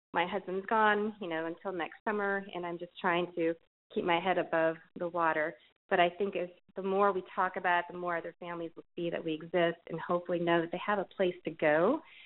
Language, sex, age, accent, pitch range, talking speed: English, female, 30-49, American, 170-195 Hz, 235 wpm